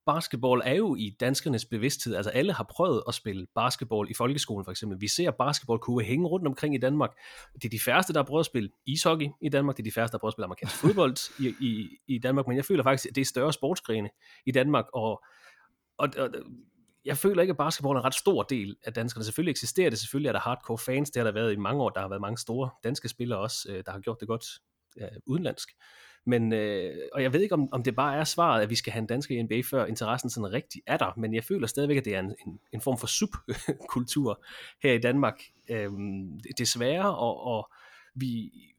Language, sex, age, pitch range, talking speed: Danish, male, 30-49, 110-140 Hz, 230 wpm